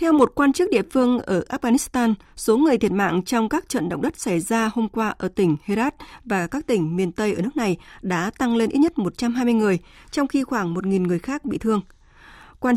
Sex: female